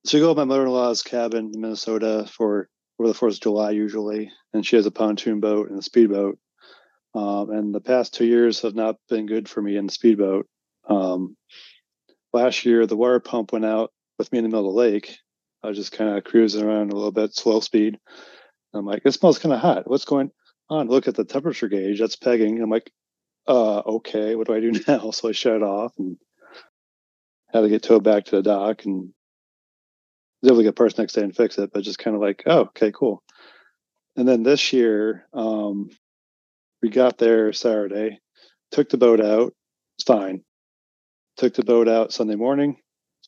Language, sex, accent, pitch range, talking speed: English, male, American, 105-120 Hz, 205 wpm